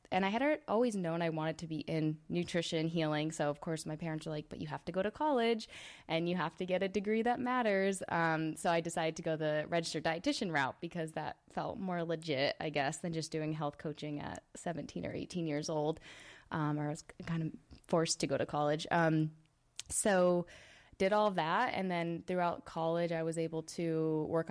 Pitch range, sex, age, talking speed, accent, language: 155-175 Hz, female, 20-39, 215 wpm, American, English